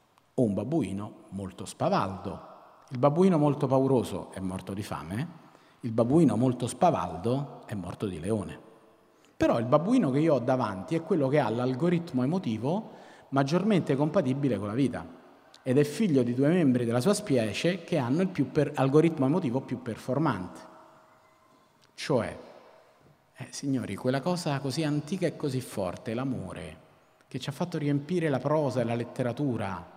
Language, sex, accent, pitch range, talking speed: Italian, male, native, 105-145 Hz, 155 wpm